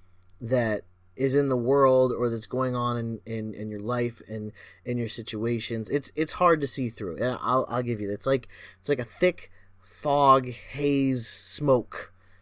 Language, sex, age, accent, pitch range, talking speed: English, male, 30-49, American, 100-145 Hz, 185 wpm